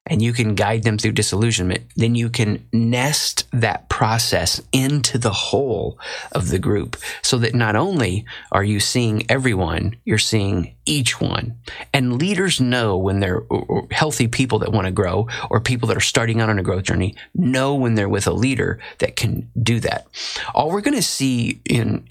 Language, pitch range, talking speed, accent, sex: English, 105-130 Hz, 185 wpm, American, male